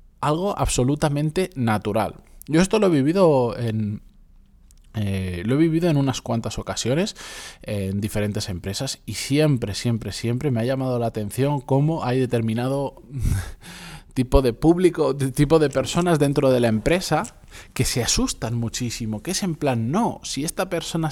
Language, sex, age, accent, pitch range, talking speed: Spanish, male, 20-39, Spanish, 110-155 Hz, 155 wpm